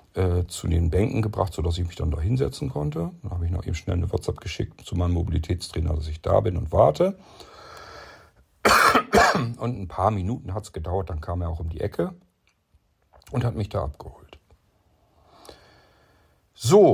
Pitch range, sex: 85-110 Hz, male